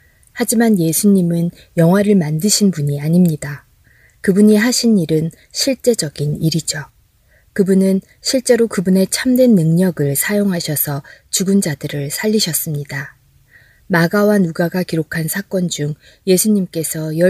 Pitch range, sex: 150-200 Hz, female